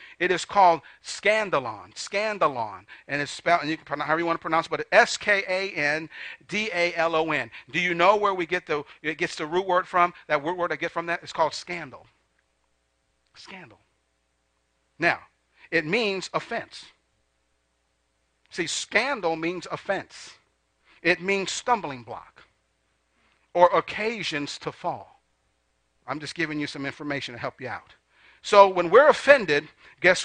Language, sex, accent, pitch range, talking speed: English, male, American, 140-195 Hz, 160 wpm